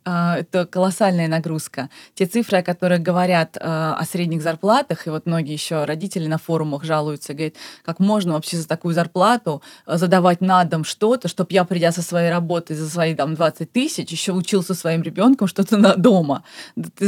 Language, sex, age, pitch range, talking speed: Russian, female, 20-39, 165-200 Hz, 180 wpm